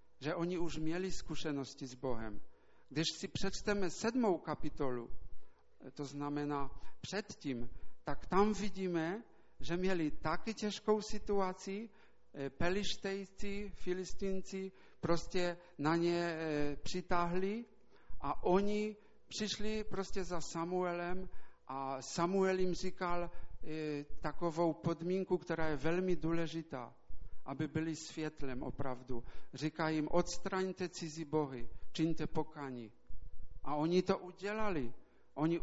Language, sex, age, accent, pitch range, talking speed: Czech, male, 50-69, Polish, 155-190 Hz, 105 wpm